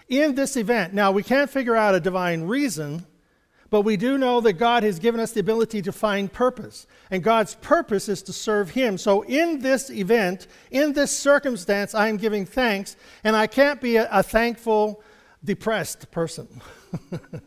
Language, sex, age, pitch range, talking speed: English, male, 50-69, 190-245 Hz, 180 wpm